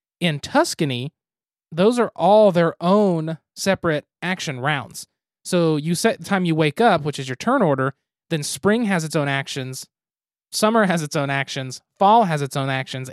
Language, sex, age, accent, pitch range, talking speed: English, male, 20-39, American, 140-180 Hz, 180 wpm